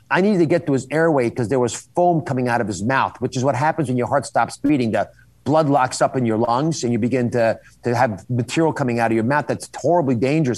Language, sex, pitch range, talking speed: English, male, 125-165 Hz, 265 wpm